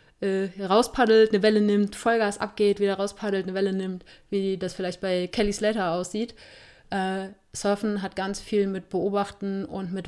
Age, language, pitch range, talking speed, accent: 30-49, German, 180-205 Hz, 160 wpm, German